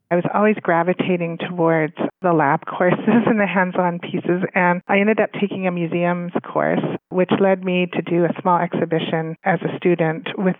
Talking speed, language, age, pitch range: 180 wpm, English, 30-49, 160-190 Hz